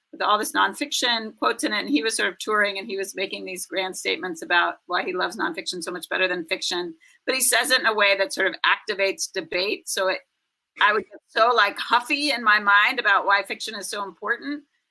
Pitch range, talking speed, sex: 185-300 Hz, 240 wpm, female